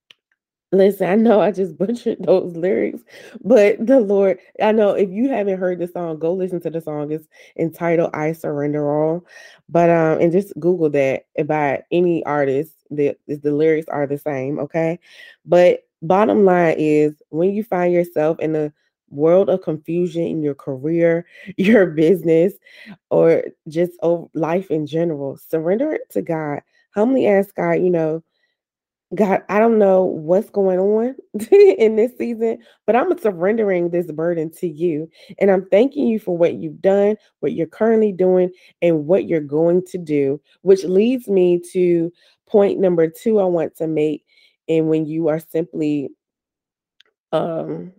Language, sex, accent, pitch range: English, female, American, 160-195 Hz